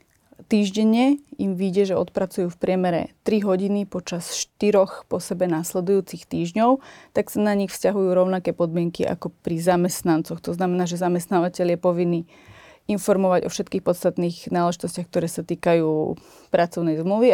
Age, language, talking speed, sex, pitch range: 30-49, Slovak, 140 wpm, female, 170-195 Hz